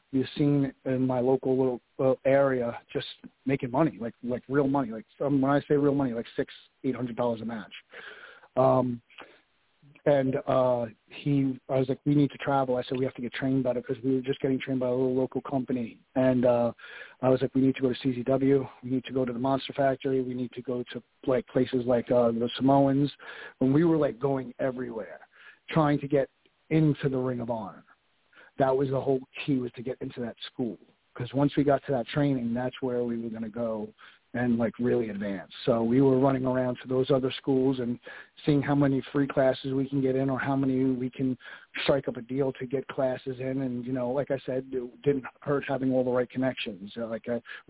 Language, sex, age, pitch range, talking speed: English, male, 40-59, 125-135 Hz, 225 wpm